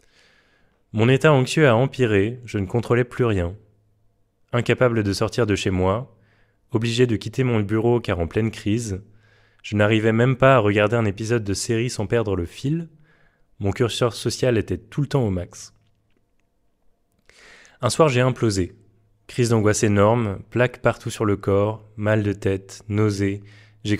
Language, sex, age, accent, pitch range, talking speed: French, male, 20-39, French, 100-120 Hz, 165 wpm